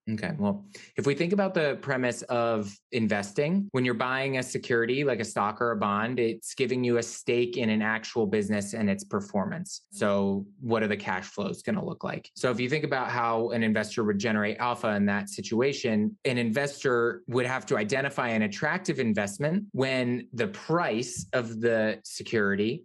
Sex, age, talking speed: male, 20-39, 185 wpm